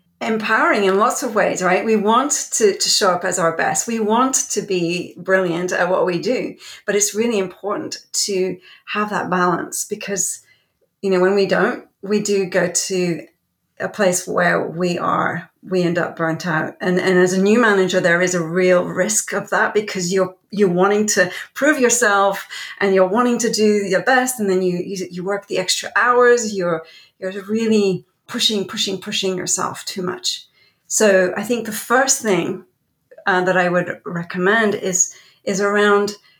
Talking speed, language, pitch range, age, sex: 180 wpm, English, 185-220 Hz, 40-59, female